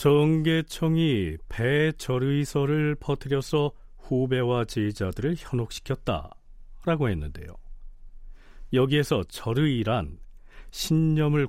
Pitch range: 105-150 Hz